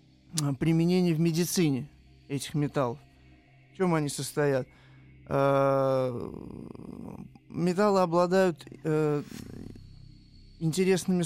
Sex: male